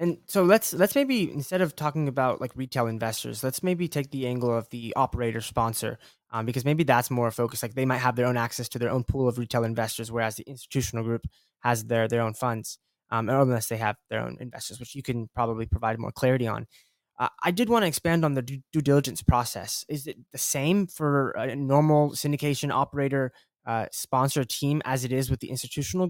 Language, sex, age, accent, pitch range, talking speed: English, male, 20-39, American, 115-140 Hz, 220 wpm